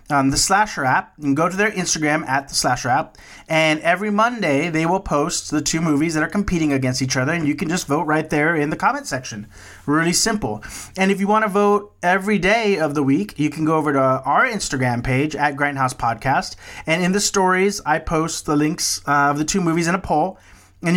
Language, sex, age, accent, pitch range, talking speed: English, male, 30-49, American, 140-190 Hz, 225 wpm